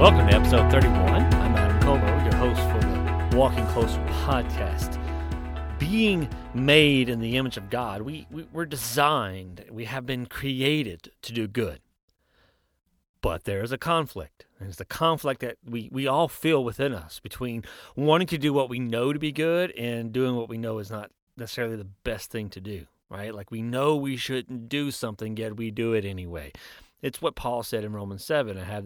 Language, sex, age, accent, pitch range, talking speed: English, male, 40-59, American, 95-140 Hz, 195 wpm